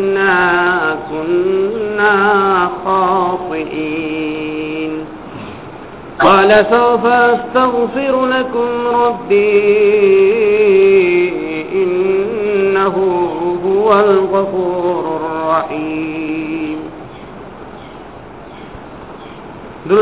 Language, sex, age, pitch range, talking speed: Bengali, male, 50-69, 160-215 Hz, 35 wpm